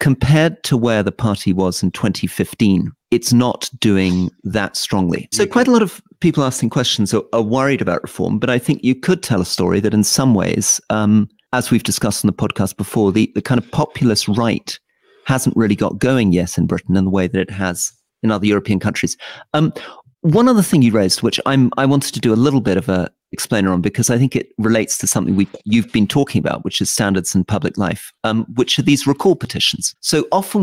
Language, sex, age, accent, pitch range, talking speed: English, male, 40-59, British, 100-130 Hz, 225 wpm